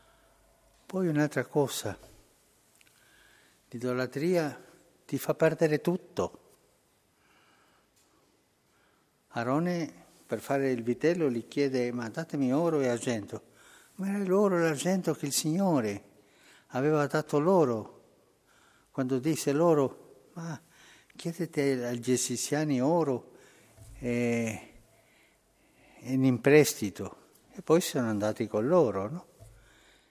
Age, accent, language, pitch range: 60-79, native, Italian, 125-165 Hz